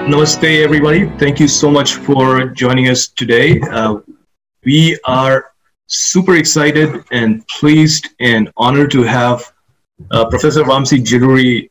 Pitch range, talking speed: 115-145 Hz, 130 wpm